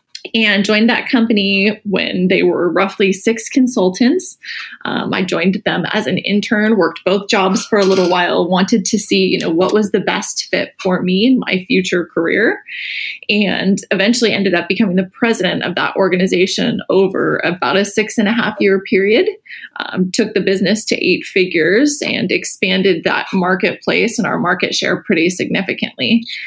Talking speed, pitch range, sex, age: 170 wpm, 190-230 Hz, female, 20-39